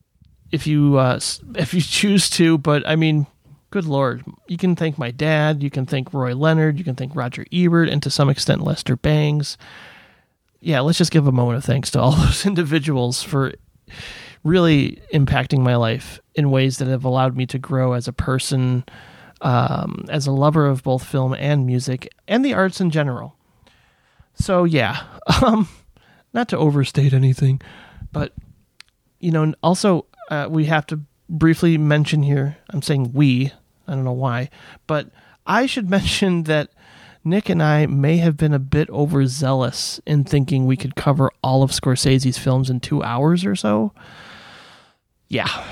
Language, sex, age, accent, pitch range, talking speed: English, male, 30-49, American, 130-165 Hz, 170 wpm